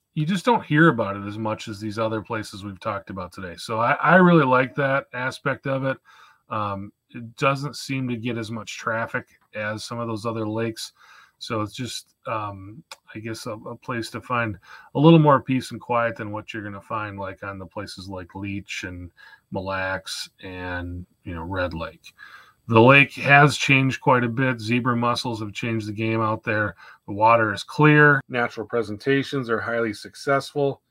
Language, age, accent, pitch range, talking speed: English, 30-49, American, 105-140 Hz, 195 wpm